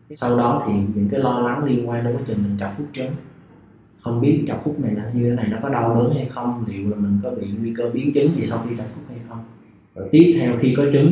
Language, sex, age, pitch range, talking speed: Vietnamese, male, 20-39, 105-120 Hz, 285 wpm